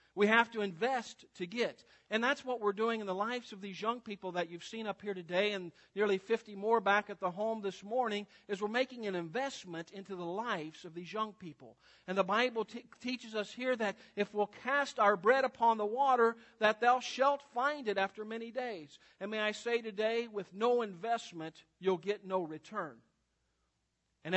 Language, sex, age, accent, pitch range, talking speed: English, male, 50-69, American, 190-230 Hz, 200 wpm